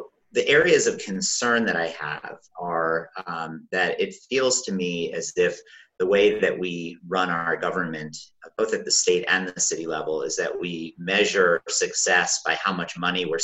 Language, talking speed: English, 185 wpm